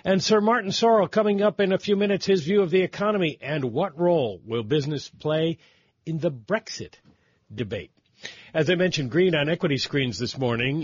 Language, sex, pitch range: English, male, 120-160 Hz